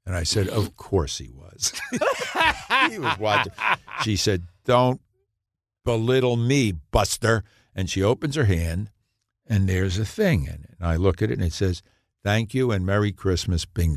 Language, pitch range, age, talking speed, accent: English, 95-115 Hz, 60-79, 175 wpm, American